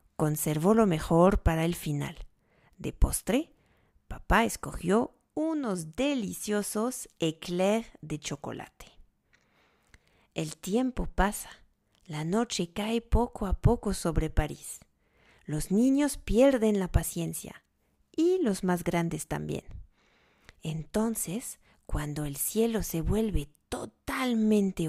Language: French